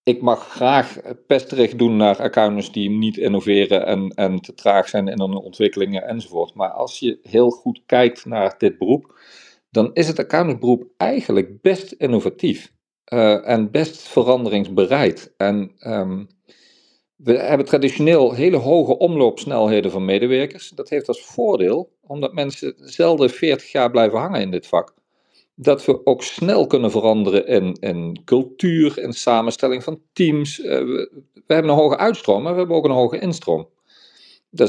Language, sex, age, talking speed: Dutch, male, 50-69, 155 wpm